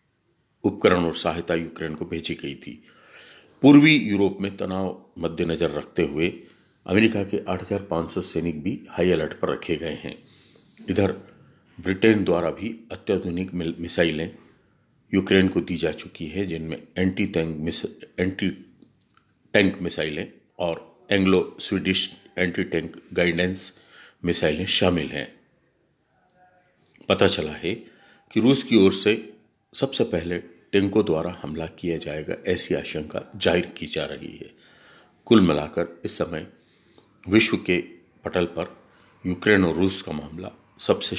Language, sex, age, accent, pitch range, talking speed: Hindi, male, 50-69, native, 80-100 Hz, 130 wpm